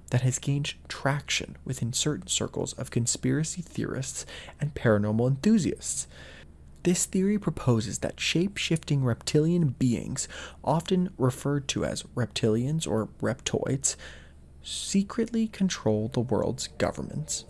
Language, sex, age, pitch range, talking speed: English, male, 20-39, 110-150 Hz, 110 wpm